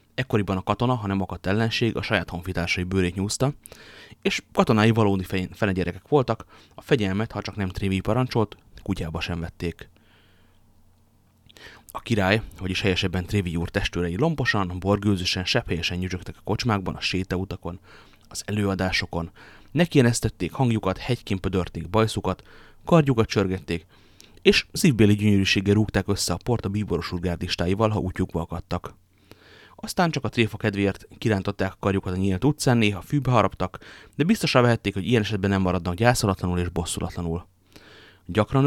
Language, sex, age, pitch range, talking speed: Hungarian, male, 30-49, 95-115 Hz, 135 wpm